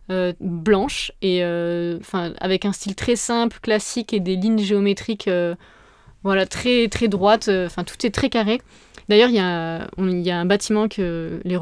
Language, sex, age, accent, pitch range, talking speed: French, female, 20-39, French, 185-215 Hz, 175 wpm